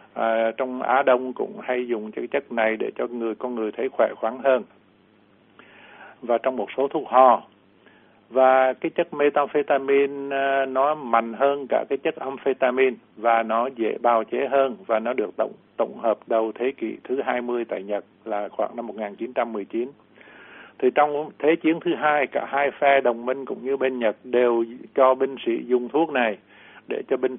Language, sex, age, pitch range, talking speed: Vietnamese, male, 60-79, 120-135 Hz, 185 wpm